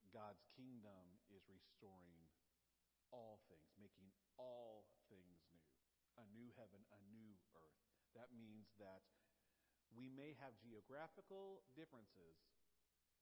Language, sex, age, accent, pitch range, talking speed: English, male, 50-69, American, 100-140 Hz, 110 wpm